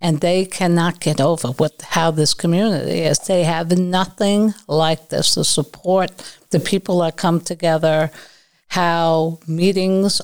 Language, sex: English, female